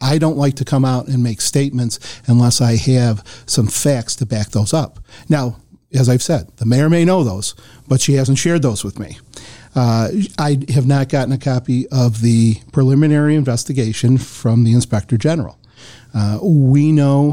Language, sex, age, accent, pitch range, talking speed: English, male, 50-69, American, 115-140 Hz, 180 wpm